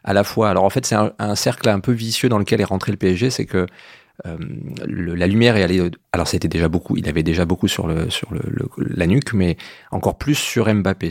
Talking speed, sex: 255 wpm, male